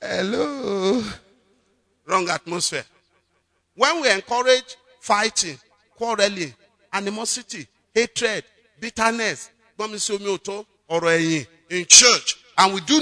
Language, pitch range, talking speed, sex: English, 140-205 Hz, 75 wpm, male